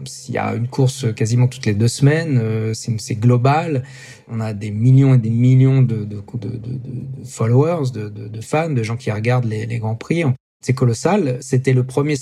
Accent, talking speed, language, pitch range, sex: French, 205 wpm, English, 115-130 Hz, male